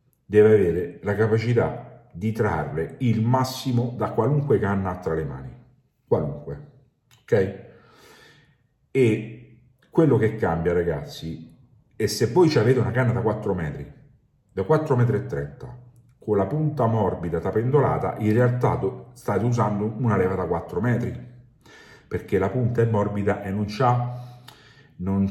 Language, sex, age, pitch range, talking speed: Italian, male, 50-69, 100-130 Hz, 135 wpm